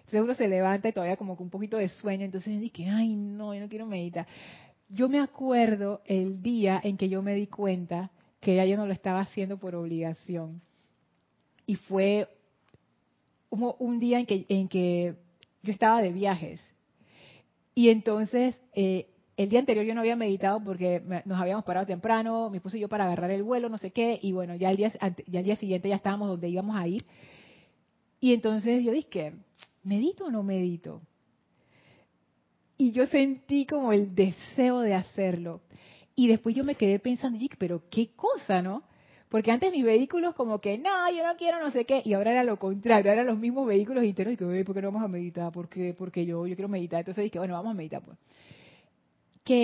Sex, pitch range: female, 185-230 Hz